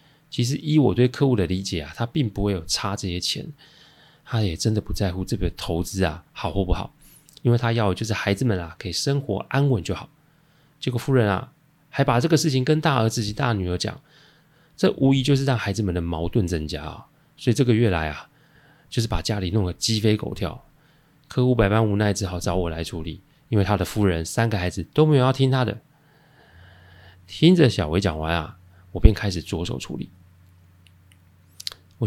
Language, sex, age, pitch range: Chinese, male, 20-39, 90-130 Hz